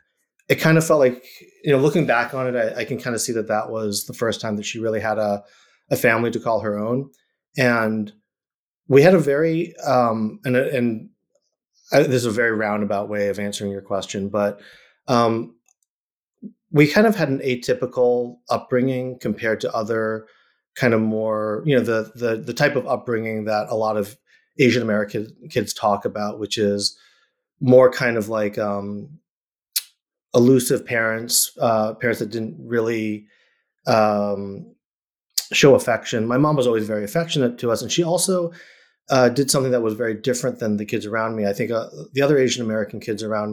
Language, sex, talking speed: English, male, 185 wpm